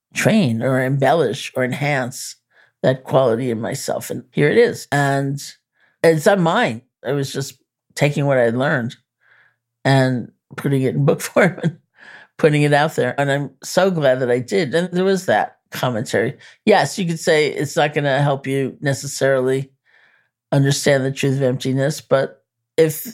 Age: 50-69